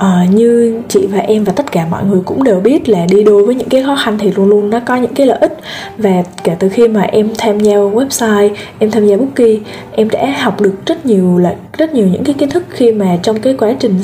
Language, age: Vietnamese, 10-29